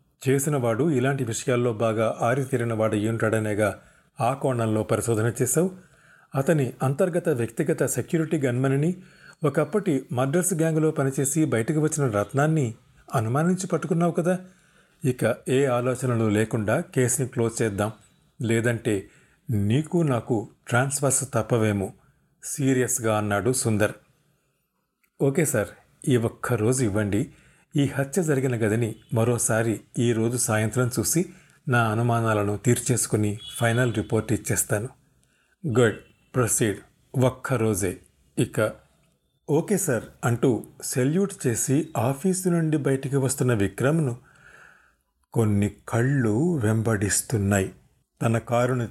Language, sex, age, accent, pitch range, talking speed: Telugu, male, 40-59, native, 115-145 Hz, 100 wpm